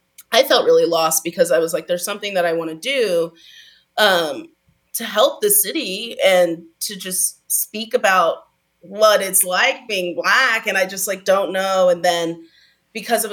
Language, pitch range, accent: English, 165-210 Hz, American